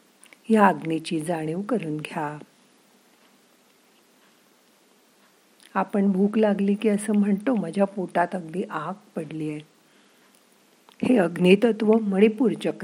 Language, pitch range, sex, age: Marathi, 155-215 Hz, female, 50-69